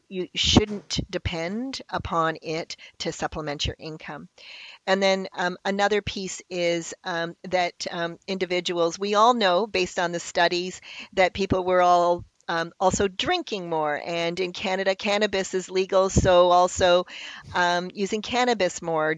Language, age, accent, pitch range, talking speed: English, 50-69, American, 160-185 Hz, 145 wpm